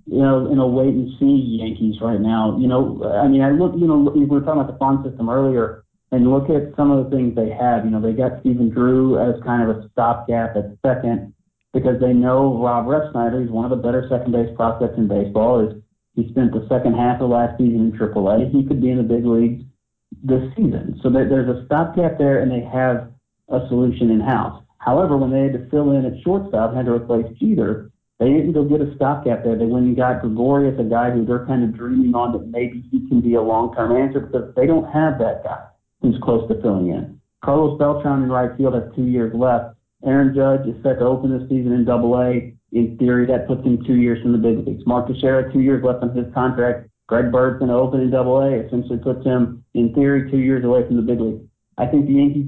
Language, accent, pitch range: English, American, 120-135 Hz